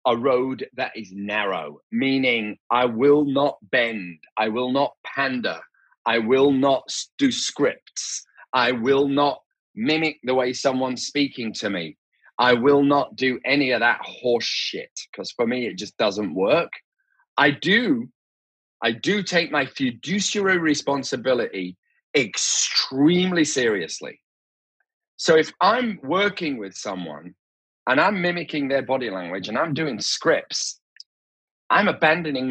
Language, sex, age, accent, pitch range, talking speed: English, male, 30-49, British, 120-175 Hz, 135 wpm